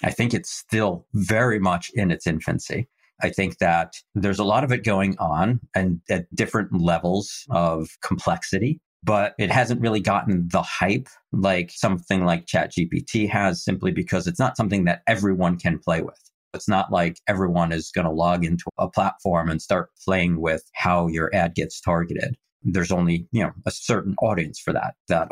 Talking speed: 185 wpm